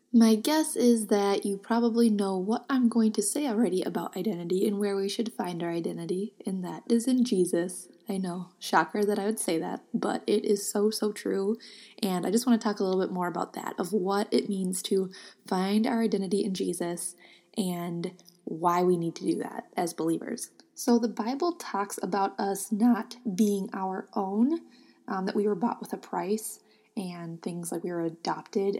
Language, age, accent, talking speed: English, 20-39, American, 200 wpm